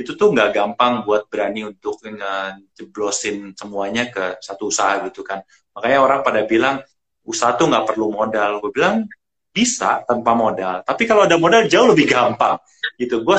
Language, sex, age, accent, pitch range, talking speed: Indonesian, male, 30-49, native, 110-135 Hz, 165 wpm